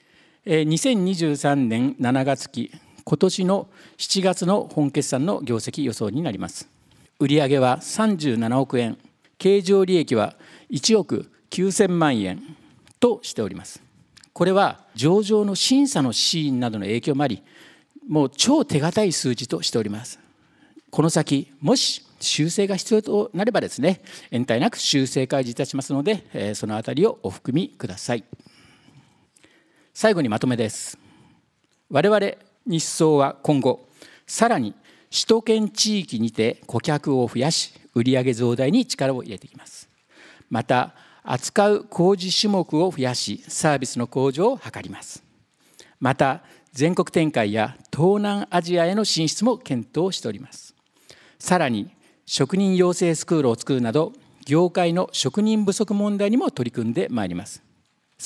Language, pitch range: Japanese, 130-200 Hz